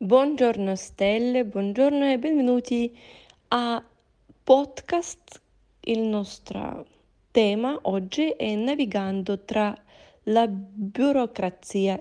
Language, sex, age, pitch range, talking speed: Italian, female, 20-39, 190-255 Hz, 80 wpm